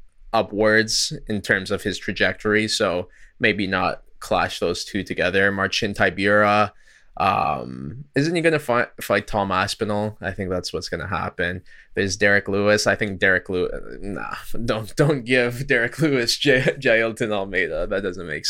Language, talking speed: English, 155 wpm